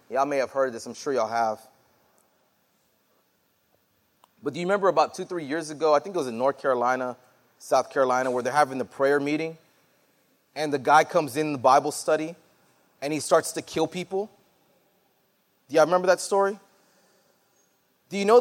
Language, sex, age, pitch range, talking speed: English, male, 30-49, 125-170 Hz, 185 wpm